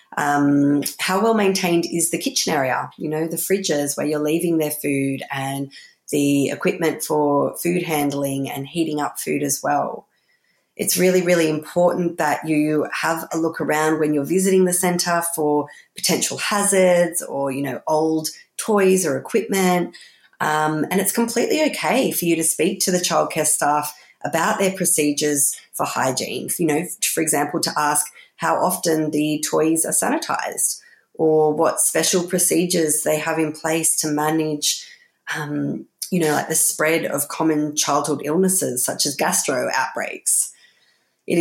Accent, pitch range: Australian, 145-175 Hz